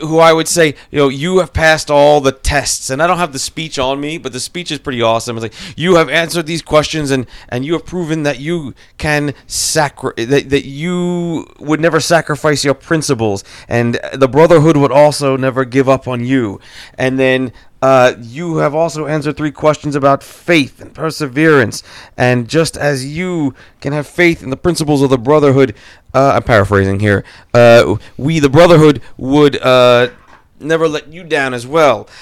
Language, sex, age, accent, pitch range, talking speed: English, male, 30-49, American, 120-160 Hz, 190 wpm